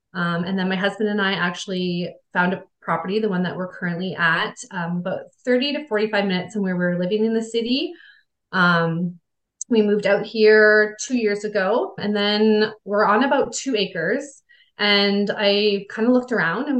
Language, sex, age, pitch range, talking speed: English, female, 20-39, 180-220 Hz, 185 wpm